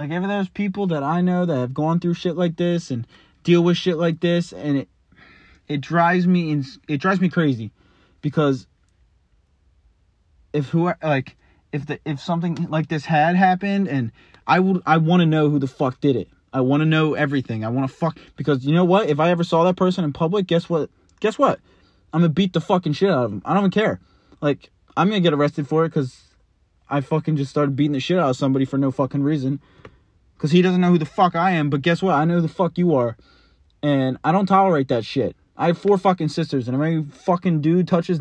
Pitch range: 140-180 Hz